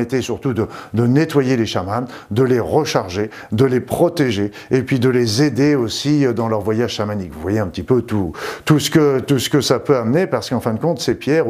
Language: French